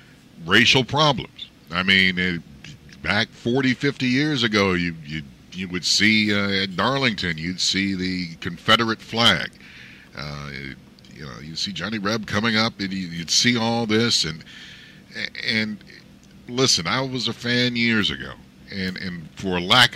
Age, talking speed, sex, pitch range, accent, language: 50-69, 155 wpm, male, 80-115 Hz, American, English